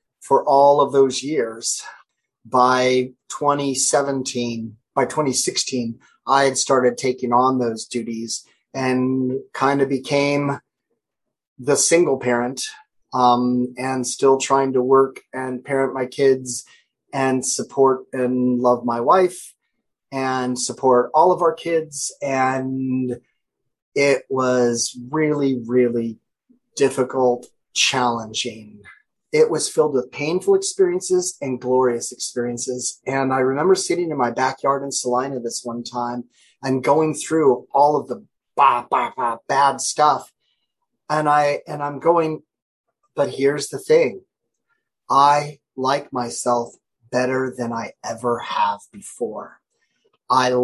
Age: 30-49